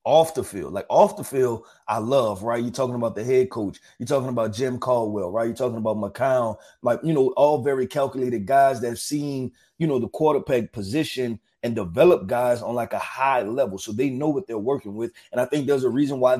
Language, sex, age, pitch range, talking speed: English, male, 30-49, 120-145 Hz, 230 wpm